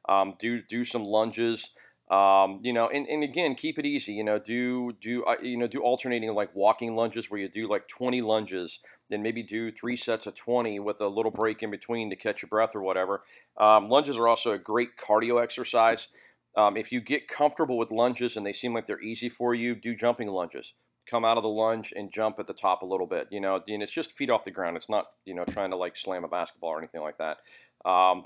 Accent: American